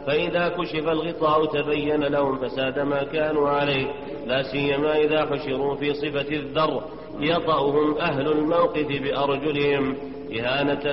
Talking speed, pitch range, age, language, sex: 115 wpm, 140-150 Hz, 40-59, Arabic, male